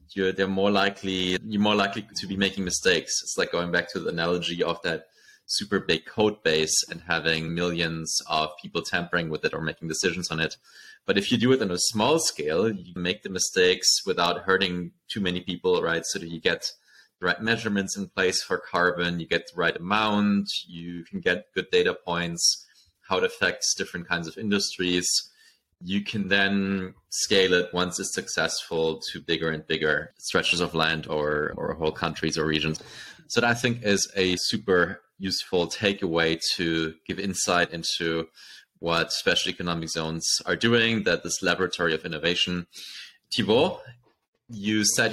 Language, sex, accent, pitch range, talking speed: English, male, German, 85-100 Hz, 175 wpm